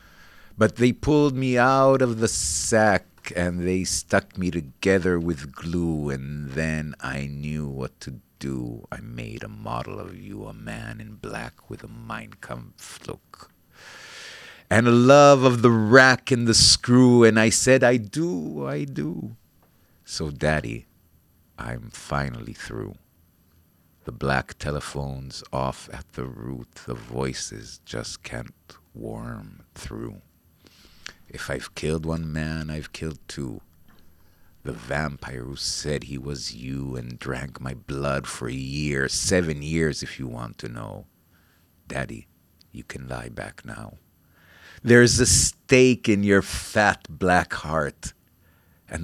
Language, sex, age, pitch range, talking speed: Hebrew, male, 50-69, 70-95 Hz, 140 wpm